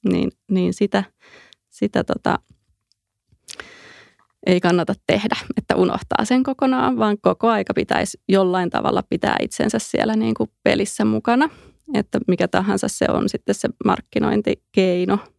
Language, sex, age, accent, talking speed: Finnish, female, 20-39, native, 130 wpm